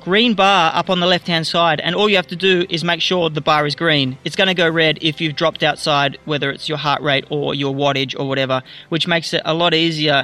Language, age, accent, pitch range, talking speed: English, 30-49, Australian, 155-185 Hz, 270 wpm